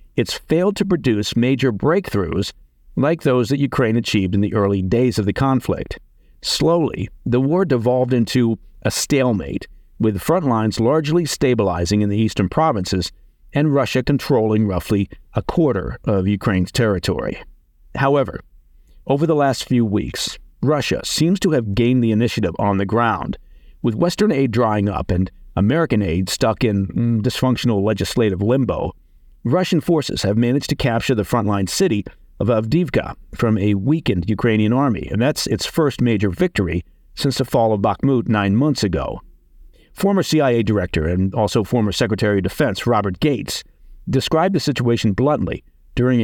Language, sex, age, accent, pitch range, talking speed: English, male, 50-69, American, 100-135 Hz, 155 wpm